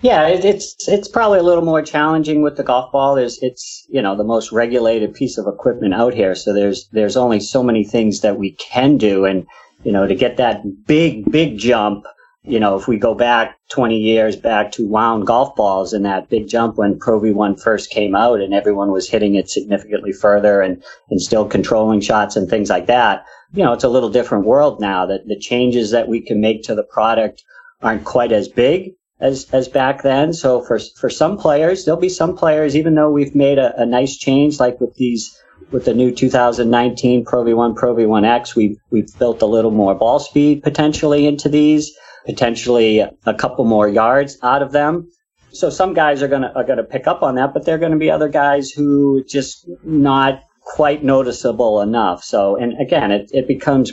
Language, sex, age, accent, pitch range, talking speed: English, male, 50-69, American, 110-145 Hz, 205 wpm